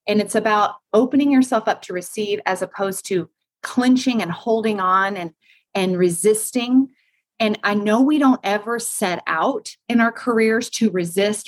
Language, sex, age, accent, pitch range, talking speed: English, female, 30-49, American, 190-245 Hz, 160 wpm